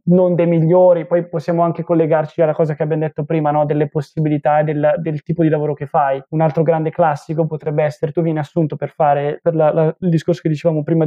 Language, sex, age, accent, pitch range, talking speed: Italian, male, 20-39, native, 150-170 Hz, 235 wpm